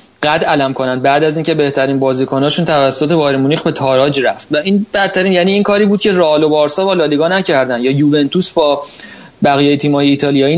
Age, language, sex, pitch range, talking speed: 30-49, Persian, male, 140-185 Hz, 195 wpm